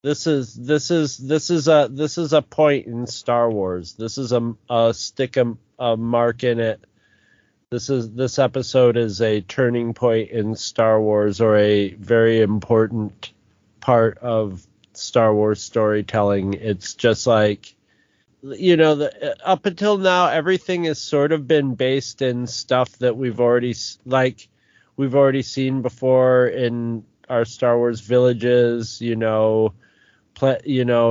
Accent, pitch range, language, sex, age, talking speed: American, 110-135 Hz, English, male, 30-49, 150 wpm